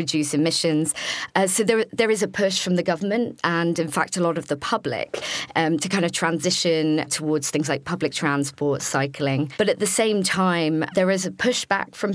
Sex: female